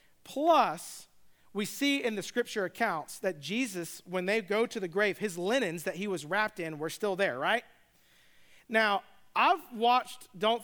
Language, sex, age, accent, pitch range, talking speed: English, male, 40-59, American, 195-245 Hz, 170 wpm